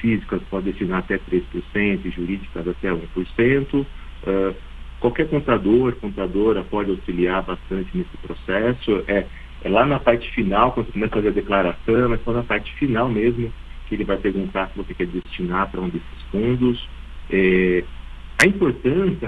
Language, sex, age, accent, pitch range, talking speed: Portuguese, male, 50-69, Brazilian, 85-115 Hz, 160 wpm